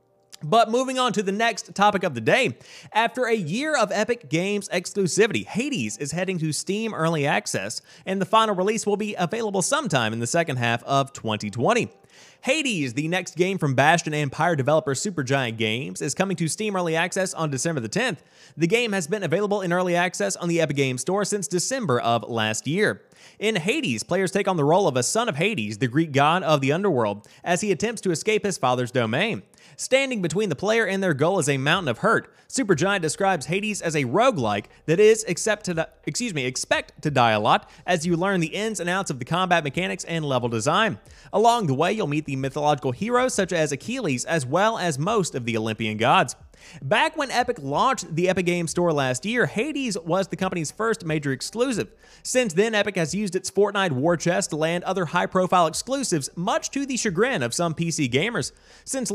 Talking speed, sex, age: 210 wpm, male, 30-49